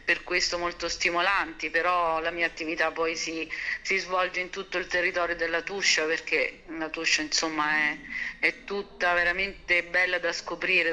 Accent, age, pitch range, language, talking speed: native, 50-69, 170-185 Hz, Italian, 160 wpm